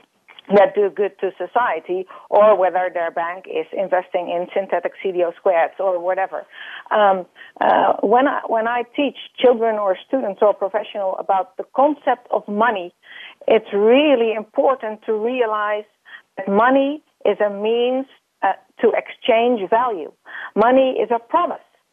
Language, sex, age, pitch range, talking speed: English, female, 50-69, 195-250 Hz, 140 wpm